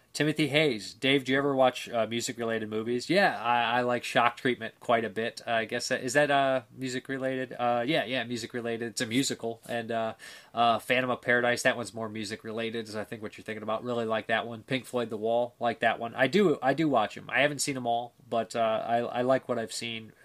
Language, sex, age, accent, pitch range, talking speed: English, male, 20-39, American, 110-130 Hz, 230 wpm